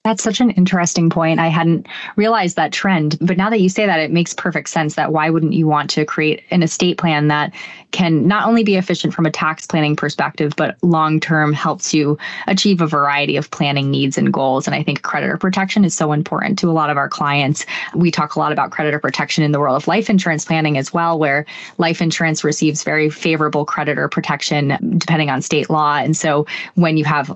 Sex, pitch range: female, 150-180 Hz